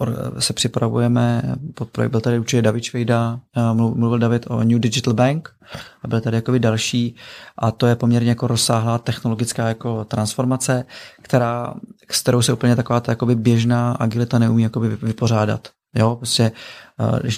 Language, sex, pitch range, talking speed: Czech, male, 115-125 Hz, 140 wpm